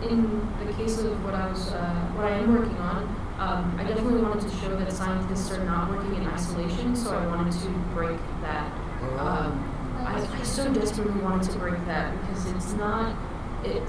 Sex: female